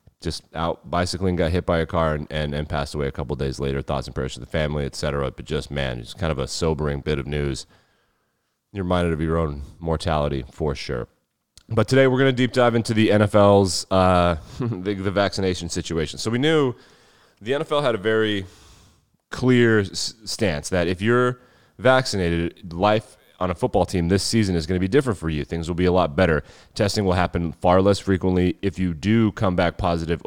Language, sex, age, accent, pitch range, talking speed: English, male, 30-49, American, 80-105 Hz, 210 wpm